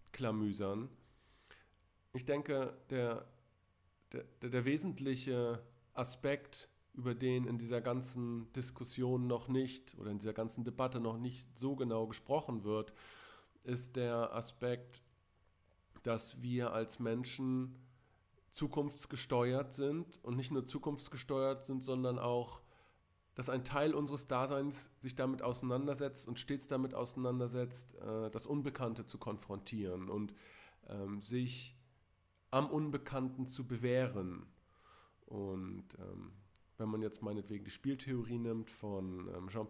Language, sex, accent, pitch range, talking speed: English, male, German, 110-135 Hz, 115 wpm